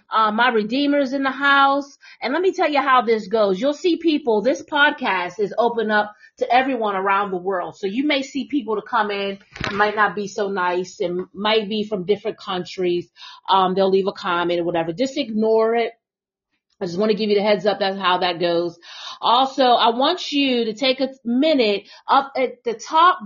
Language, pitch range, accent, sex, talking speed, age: English, 205-280 Hz, American, female, 210 wpm, 40-59